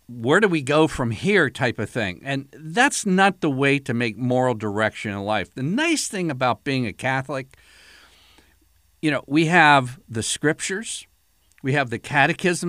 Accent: American